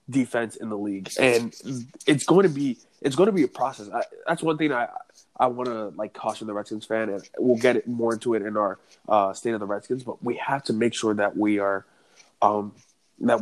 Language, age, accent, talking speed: English, 20-39, American, 235 wpm